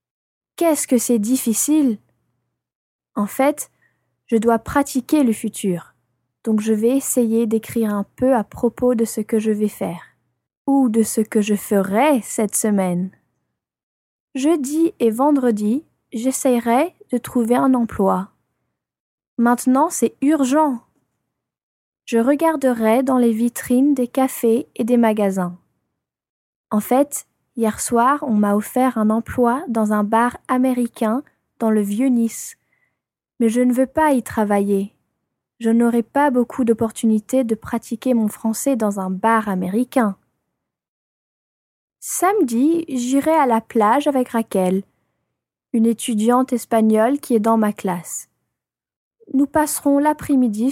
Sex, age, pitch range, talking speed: female, 20-39, 220-265 Hz, 130 wpm